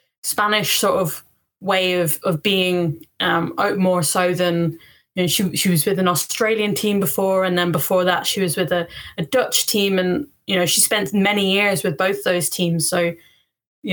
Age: 10-29